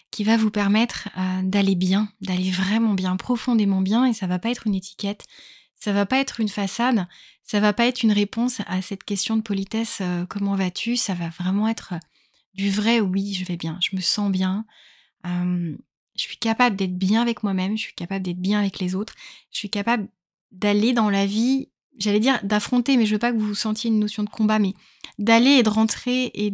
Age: 20-39